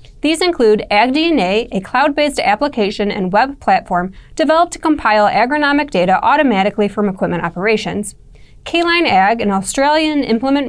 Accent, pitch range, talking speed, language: American, 205-290 Hz, 130 wpm, English